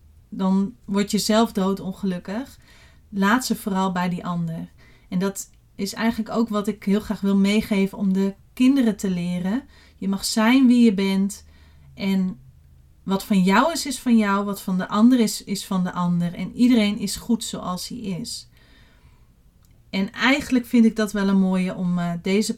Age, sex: 40-59, female